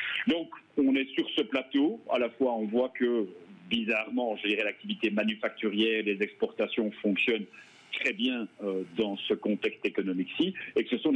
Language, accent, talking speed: French, French, 155 wpm